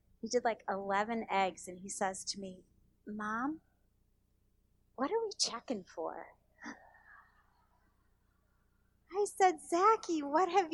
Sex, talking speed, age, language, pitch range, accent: female, 115 wpm, 30-49, English, 185-265 Hz, American